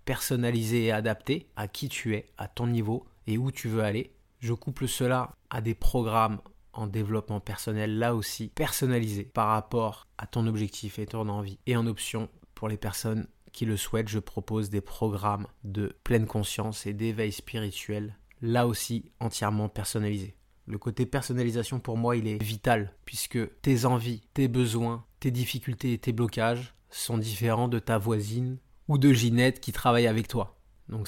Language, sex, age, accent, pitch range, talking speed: French, male, 20-39, French, 110-125 Hz, 170 wpm